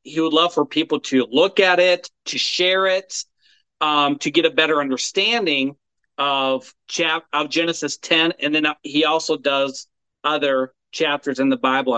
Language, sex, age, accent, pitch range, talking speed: English, male, 40-59, American, 145-180 Hz, 165 wpm